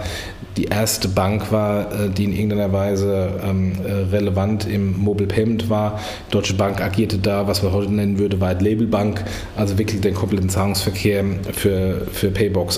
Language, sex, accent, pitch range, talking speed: German, male, German, 100-130 Hz, 145 wpm